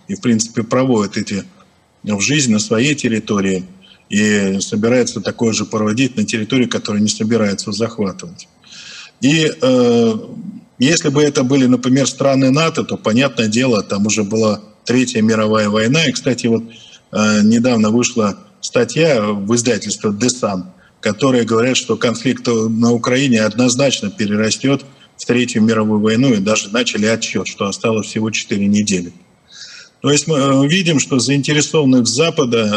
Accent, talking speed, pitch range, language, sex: native, 140 wpm, 110-135 Hz, Russian, male